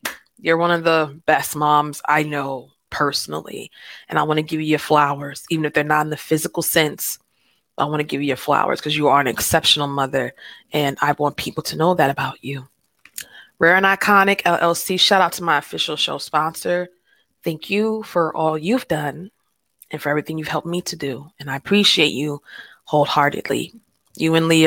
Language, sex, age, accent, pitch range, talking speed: English, female, 20-39, American, 150-215 Hz, 195 wpm